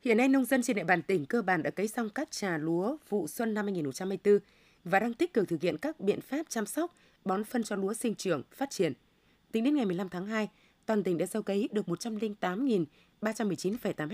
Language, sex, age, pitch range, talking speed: Vietnamese, female, 20-39, 180-235 Hz, 220 wpm